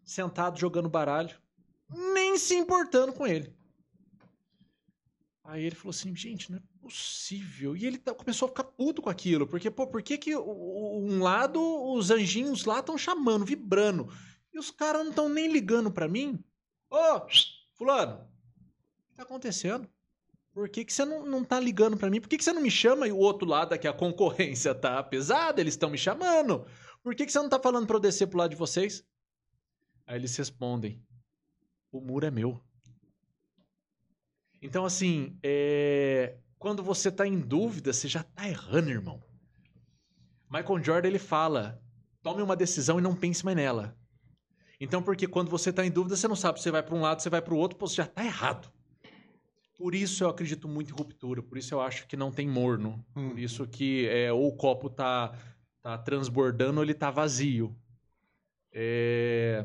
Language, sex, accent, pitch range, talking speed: Portuguese, male, Brazilian, 135-215 Hz, 185 wpm